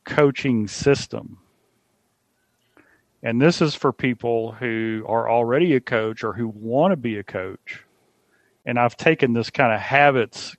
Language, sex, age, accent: English, male, 40-59, American